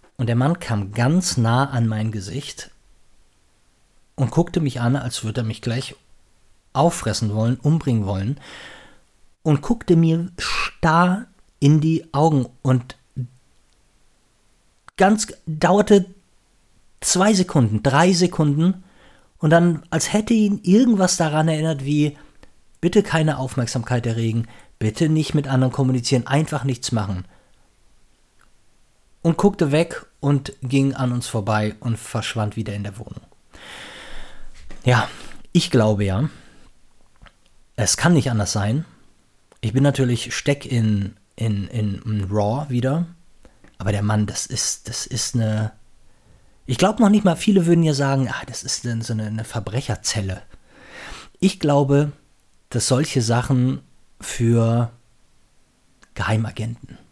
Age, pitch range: 40-59, 110-160 Hz